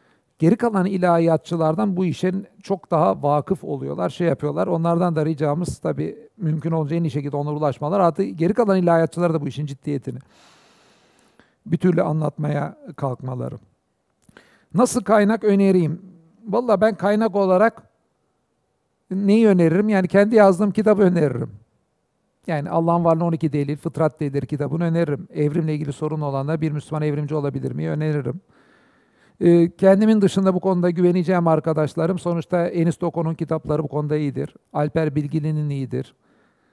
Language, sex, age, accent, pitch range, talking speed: Turkish, male, 50-69, native, 150-180 Hz, 135 wpm